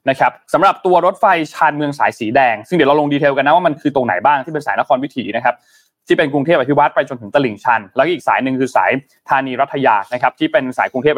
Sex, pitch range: male, 125-165 Hz